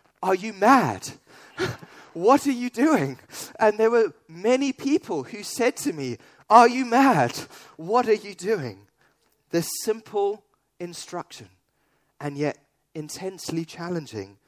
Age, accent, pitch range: 30-49, British, 130-175 Hz